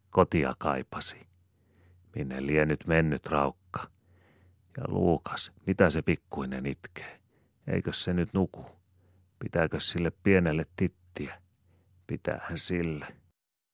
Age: 40-59